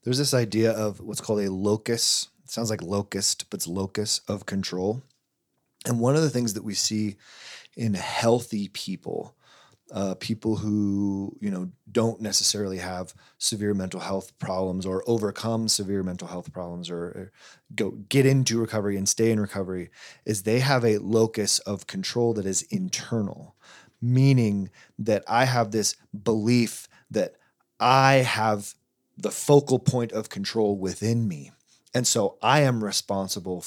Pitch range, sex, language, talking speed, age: 100-120 Hz, male, English, 155 wpm, 30-49